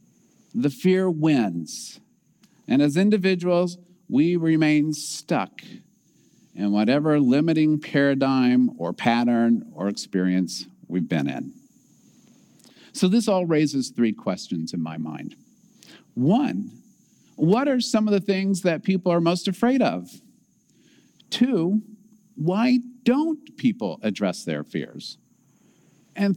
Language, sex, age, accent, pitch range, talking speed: English, male, 50-69, American, 155-225 Hz, 115 wpm